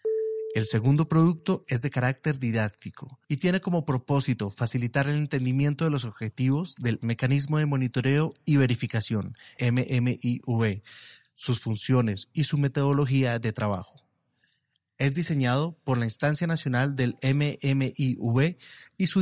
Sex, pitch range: male, 120-155 Hz